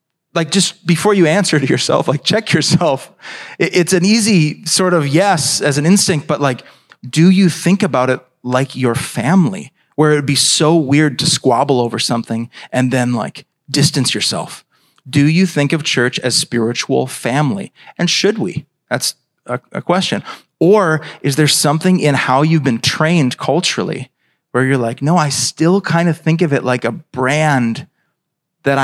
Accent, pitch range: American, 130-170 Hz